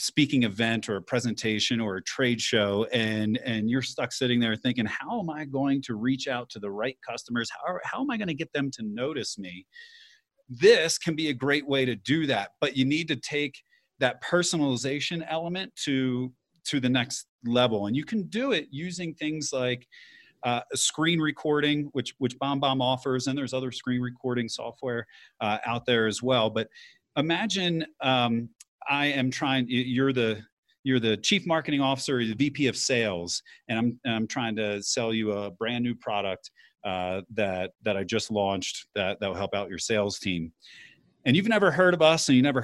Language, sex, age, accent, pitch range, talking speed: English, male, 40-59, American, 115-150 Hz, 195 wpm